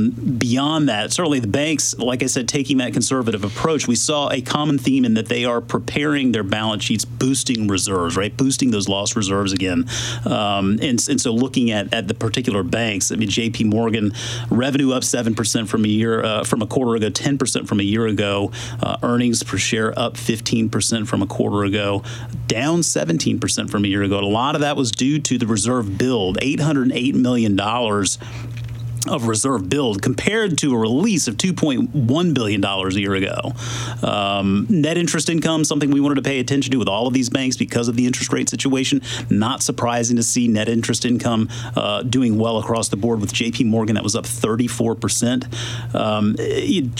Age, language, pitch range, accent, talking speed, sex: 30-49, English, 110-135 Hz, American, 185 wpm, male